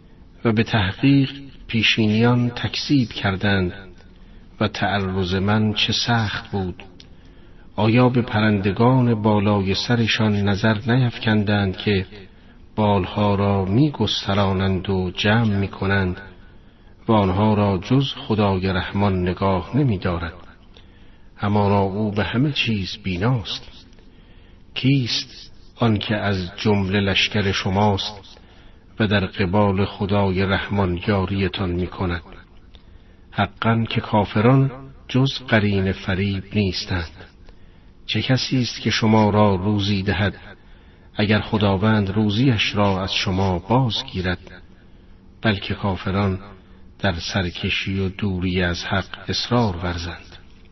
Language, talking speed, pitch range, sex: Persian, 105 wpm, 95-110 Hz, male